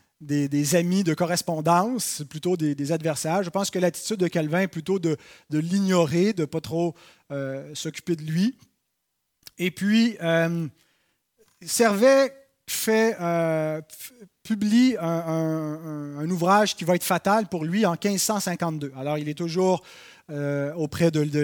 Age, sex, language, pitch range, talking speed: 30-49, male, French, 160-215 Hz, 150 wpm